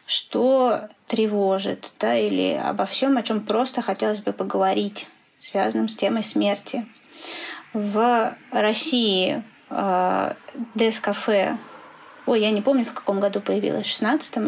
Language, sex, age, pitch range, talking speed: Russian, female, 20-39, 205-250 Hz, 120 wpm